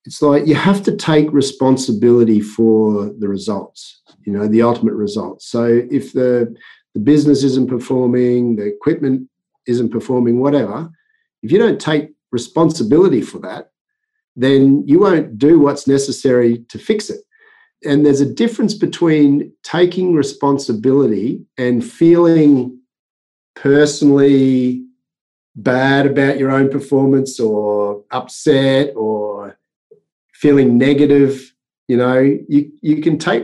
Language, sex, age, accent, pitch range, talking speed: English, male, 50-69, Australian, 125-160 Hz, 125 wpm